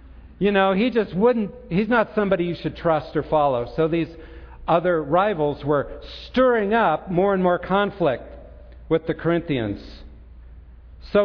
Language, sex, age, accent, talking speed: English, male, 50-69, American, 150 wpm